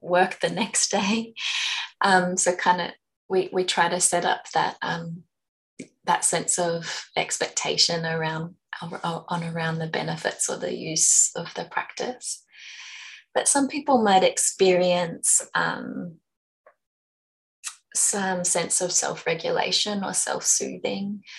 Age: 20-39